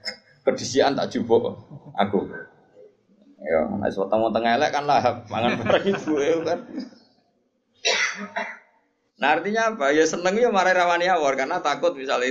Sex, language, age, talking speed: male, Malay, 20-39, 135 wpm